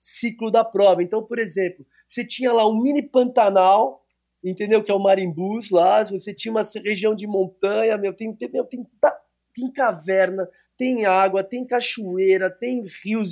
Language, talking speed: Portuguese, 165 wpm